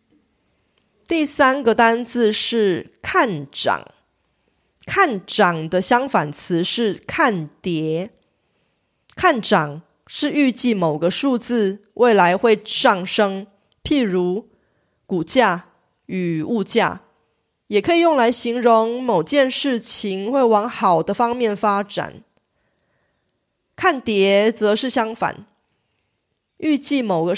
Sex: female